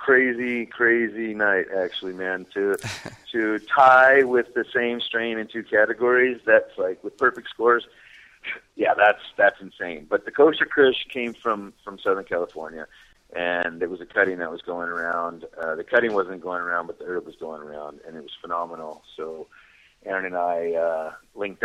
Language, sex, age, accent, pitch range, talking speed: English, male, 30-49, American, 85-125 Hz, 175 wpm